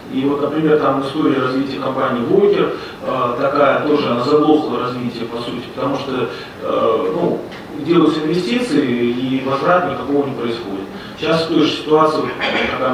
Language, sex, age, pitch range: Russian, male, 30-49, 125-155 Hz